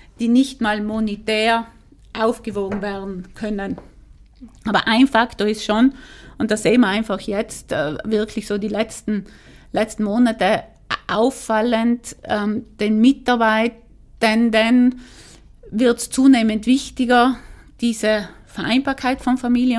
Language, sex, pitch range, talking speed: German, female, 210-245 Hz, 110 wpm